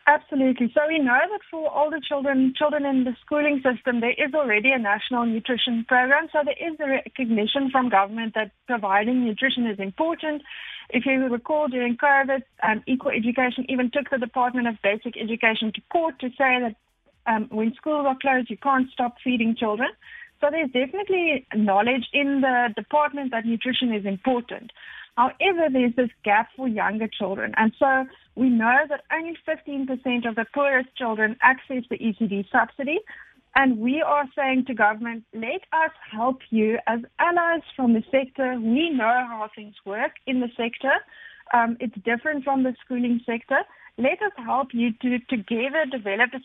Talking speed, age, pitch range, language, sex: 170 wpm, 30-49, 230-280 Hz, English, female